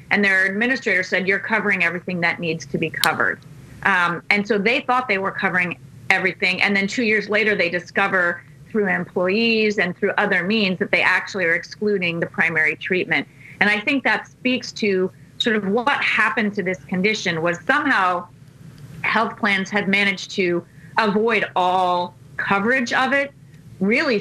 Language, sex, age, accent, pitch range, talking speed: English, female, 30-49, American, 170-215 Hz, 170 wpm